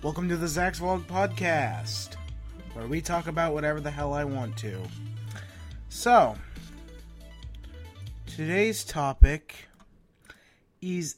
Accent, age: American, 30-49